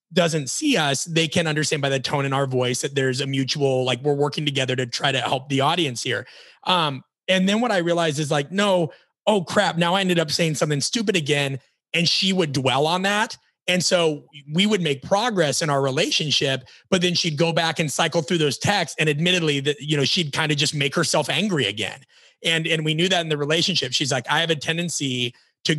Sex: male